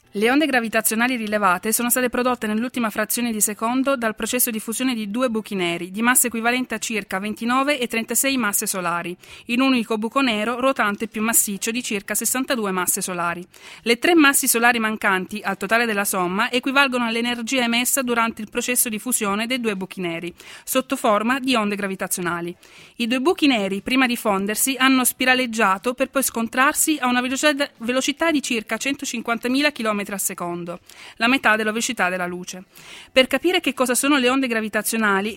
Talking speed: 175 wpm